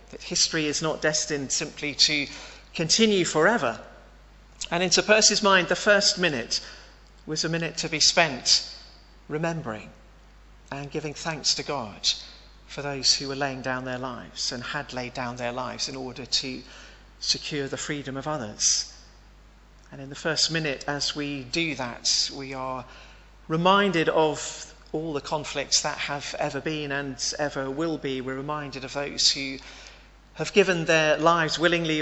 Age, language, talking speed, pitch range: 40-59, English, 160 wpm, 135-160 Hz